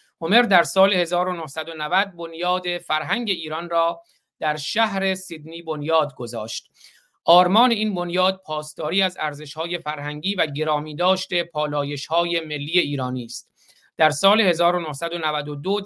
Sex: male